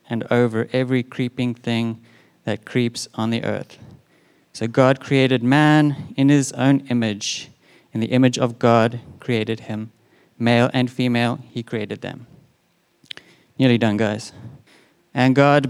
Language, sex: English, male